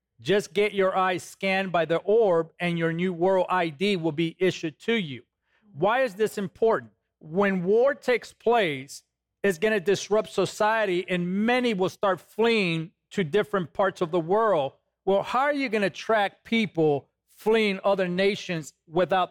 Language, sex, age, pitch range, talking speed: English, male, 40-59, 175-210 Hz, 170 wpm